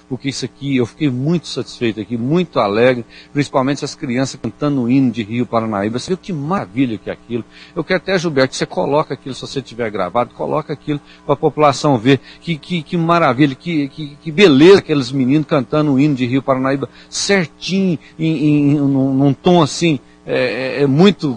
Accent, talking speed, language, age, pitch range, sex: Brazilian, 185 wpm, Portuguese, 60-79, 120-150 Hz, male